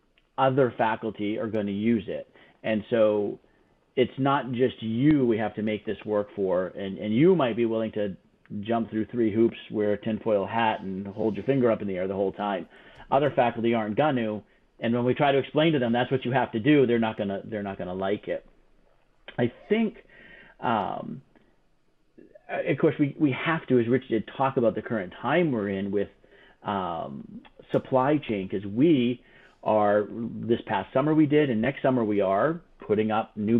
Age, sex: 40-59, male